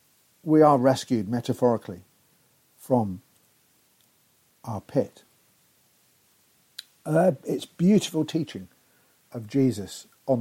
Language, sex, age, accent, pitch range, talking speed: English, male, 50-69, British, 105-140 Hz, 80 wpm